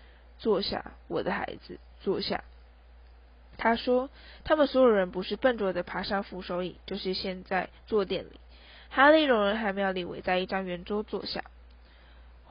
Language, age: Chinese, 10-29